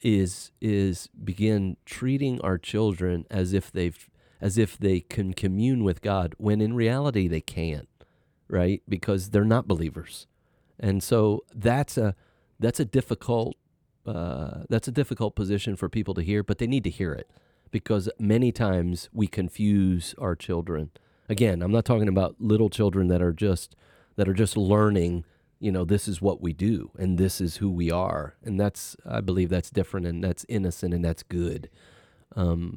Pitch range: 90-105 Hz